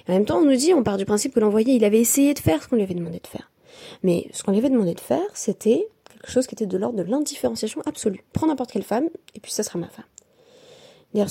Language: French